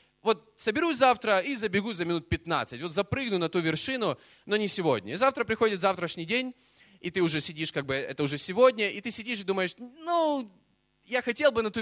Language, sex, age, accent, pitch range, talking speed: Russian, male, 20-39, native, 175-245 Hz, 210 wpm